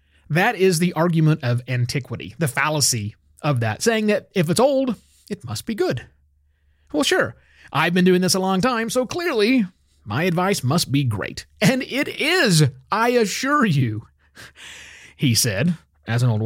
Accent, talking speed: American, 170 wpm